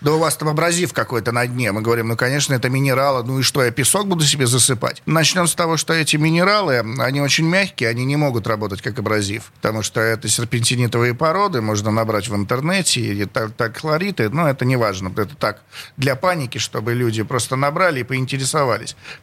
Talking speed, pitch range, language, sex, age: 200 wpm, 120-155 Hz, Russian, male, 40-59